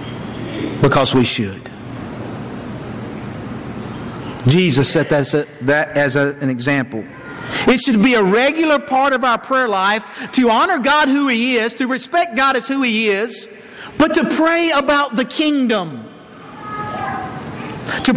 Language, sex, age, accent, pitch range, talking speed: English, male, 50-69, American, 175-270 Hz, 130 wpm